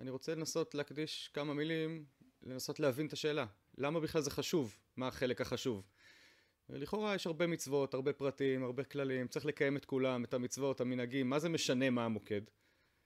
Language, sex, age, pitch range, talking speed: Hebrew, male, 30-49, 115-145 Hz, 175 wpm